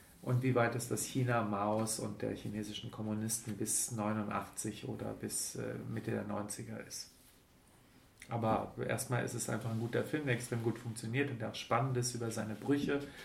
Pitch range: 110-130 Hz